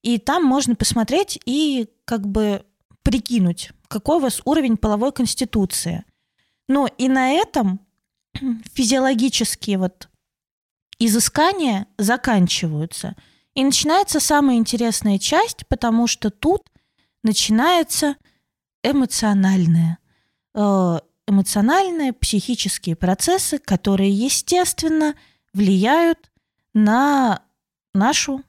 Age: 20-39